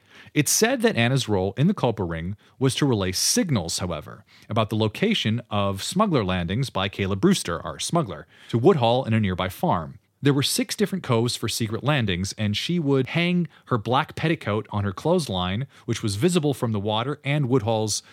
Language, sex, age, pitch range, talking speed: English, male, 30-49, 100-150 Hz, 190 wpm